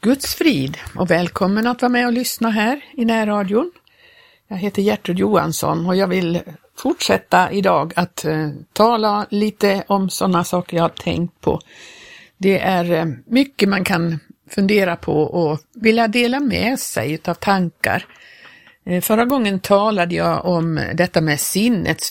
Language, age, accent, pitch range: Swedish, 60-79, native, 170-215 Hz